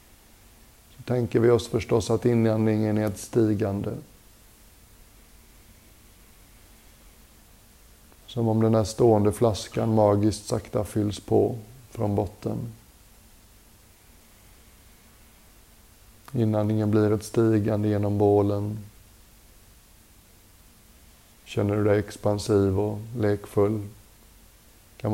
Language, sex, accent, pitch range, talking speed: Swedish, male, native, 100-110 Hz, 80 wpm